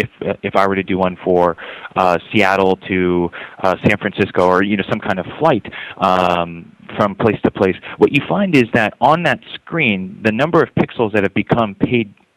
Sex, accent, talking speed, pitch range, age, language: male, American, 210 wpm, 95-120 Hz, 30-49, English